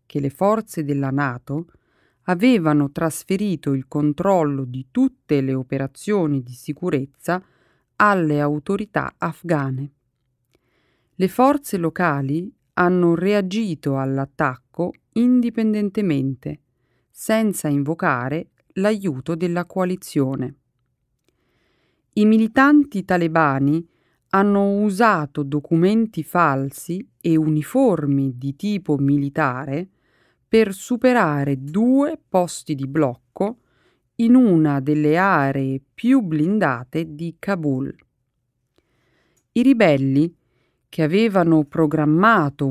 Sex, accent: female, native